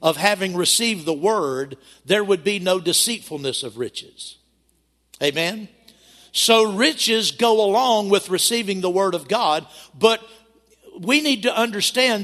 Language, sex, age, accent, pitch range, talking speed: English, male, 50-69, American, 160-220 Hz, 135 wpm